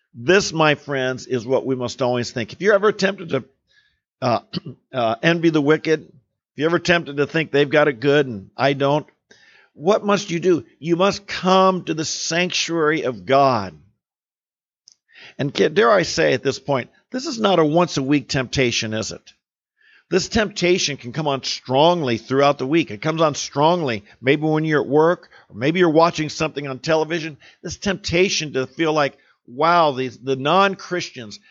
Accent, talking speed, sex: American, 180 wpm, male